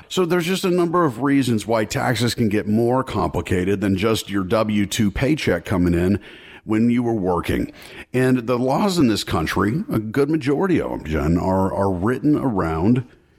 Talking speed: 175 wpm